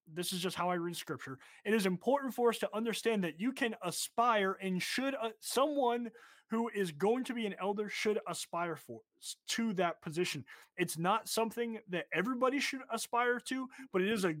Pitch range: 155-215 Hz